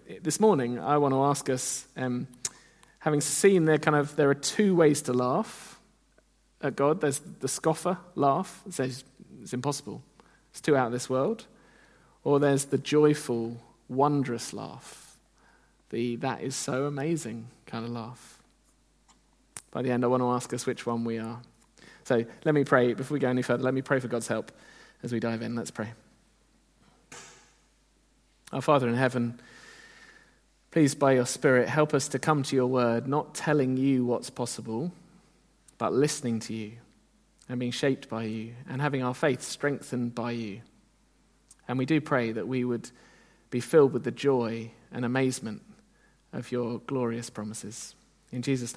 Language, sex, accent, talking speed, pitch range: English, male, British, 170 wpm, 120-150 Hz